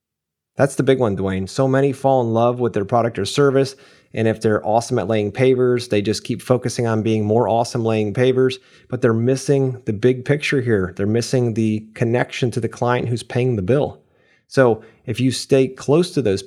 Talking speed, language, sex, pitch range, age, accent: 210 wpm, English, male, 105-125 Hz, 30-49, American